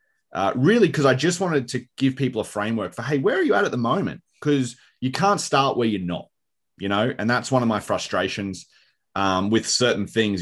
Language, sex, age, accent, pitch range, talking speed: English, male, 30-49, Australian, 100-130 Hz, 225 wpm